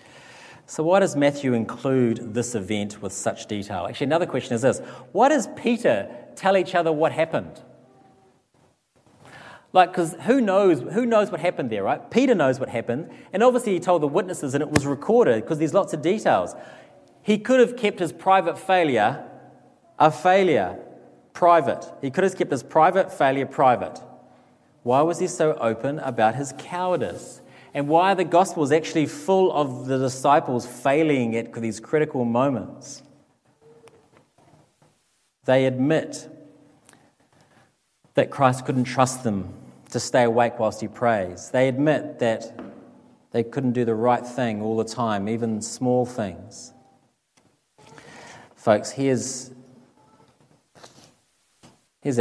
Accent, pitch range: Australian, 120-175 Hz